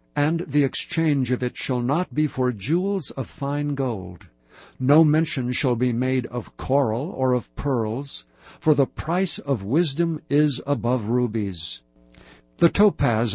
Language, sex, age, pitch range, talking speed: English, male, 60-79, 115-145 Hz, 150 wpm